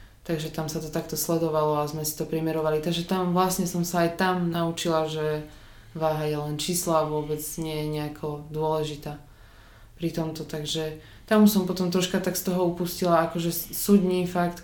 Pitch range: 150-170 Hz